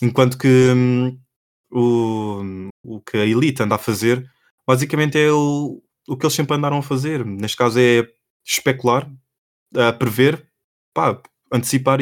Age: 20-39